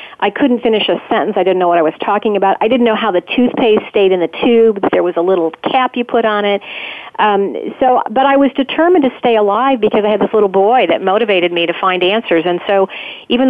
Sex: female